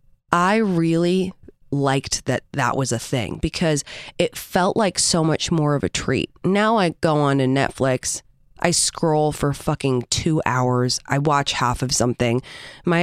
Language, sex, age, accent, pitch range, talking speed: English, female, 20-39, American, 130-165 Hz, 165 wpm